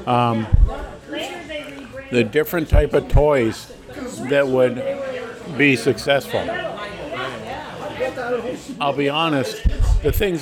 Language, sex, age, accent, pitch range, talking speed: English, male, 60-79, American, 130-155 Hz, 85 wpm